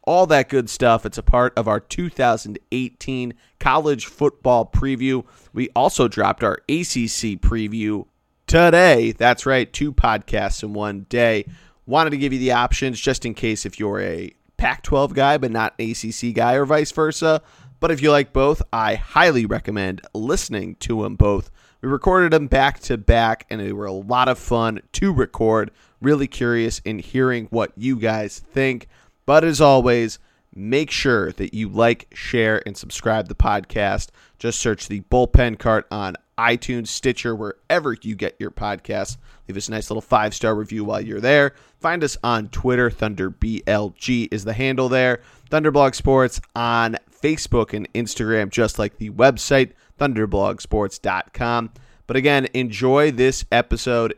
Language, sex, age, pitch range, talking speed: English, male, 30-49, 110-130 Hz, 160 wpm